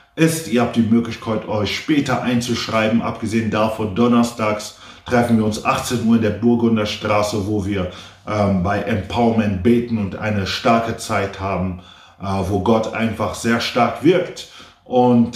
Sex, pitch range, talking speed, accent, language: male, 100-115 Hz, 150 wpm, German, German